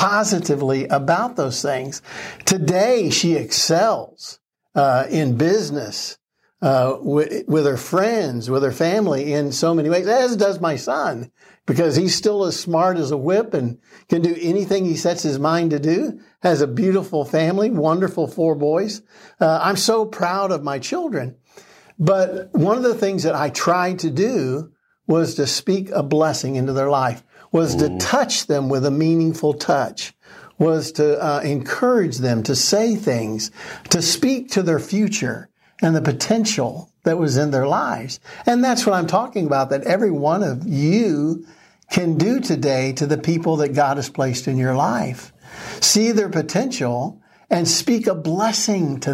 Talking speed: 165 wpm